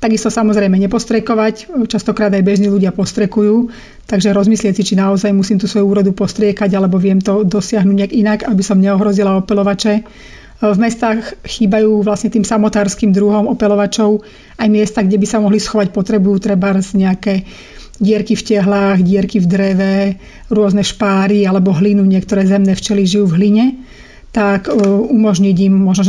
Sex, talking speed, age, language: female, 150 wpm, 30-49, Slovak